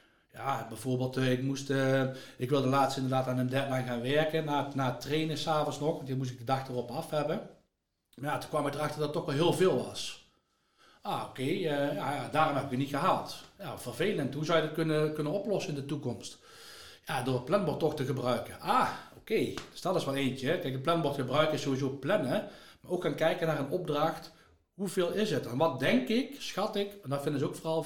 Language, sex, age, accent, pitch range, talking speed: Dutch, male, 60-79, Dutch, 130-160 Hz, 235 wpm